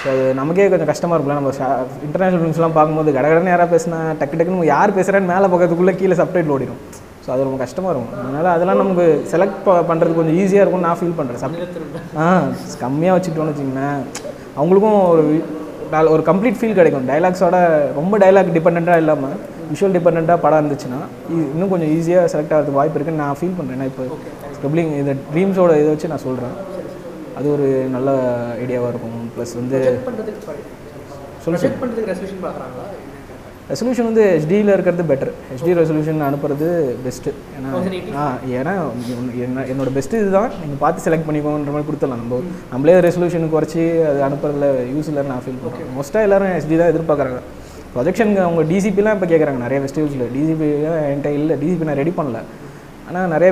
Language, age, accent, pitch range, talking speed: Tamil, 20-39, native, 140-180 Hz, 155 wpm